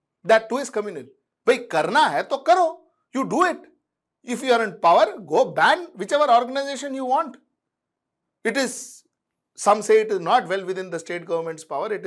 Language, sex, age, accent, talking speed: English, male, 60-79, Indian, 170 wpm